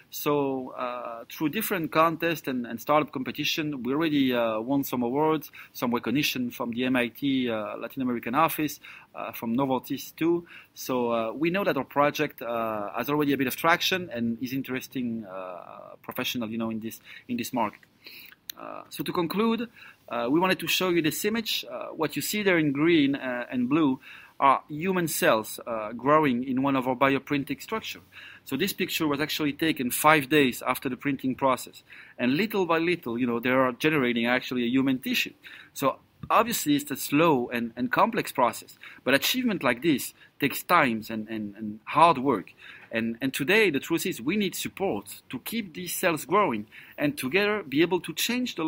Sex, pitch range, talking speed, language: male, 125-175 Hz, 185 wpm, English